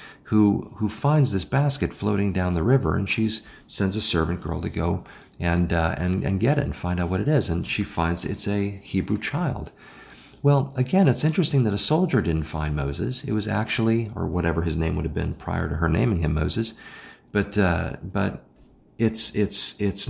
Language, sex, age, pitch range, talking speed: English, male, 50-69, 85-115 Hz, 205 wpm